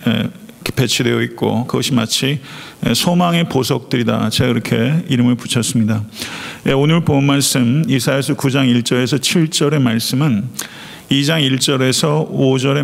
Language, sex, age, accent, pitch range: Korean, male, 50-69, native, 125-150 Hz